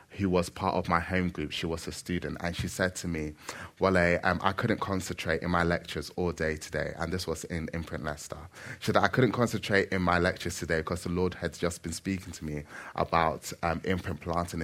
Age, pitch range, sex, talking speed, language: 20-39, 80-95 Hz, male, 225 wpm, English